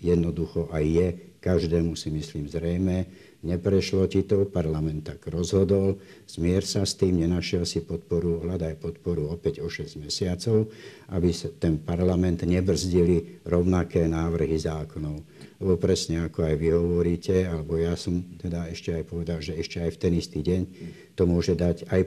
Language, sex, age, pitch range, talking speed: Slovak, male, 60-79, 80-90 Hz, 160 wpm